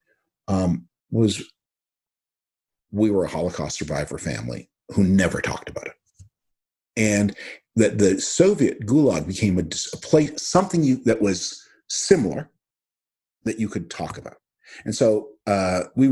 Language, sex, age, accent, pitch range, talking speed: English, male, 50-69, American, 90-115 Hz, 135 wpm